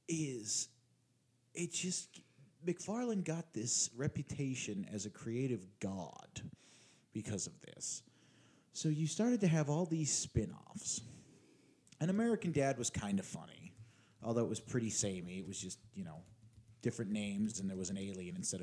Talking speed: 150 wpm